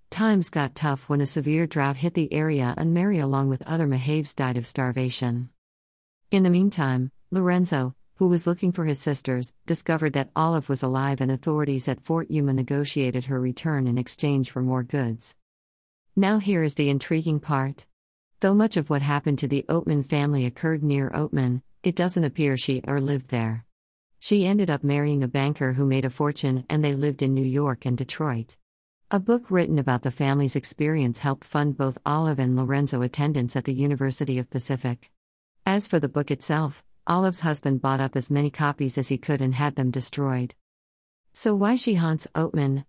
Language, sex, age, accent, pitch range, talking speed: English, female, 50-69, American, 130-155 Hz, 185 wpm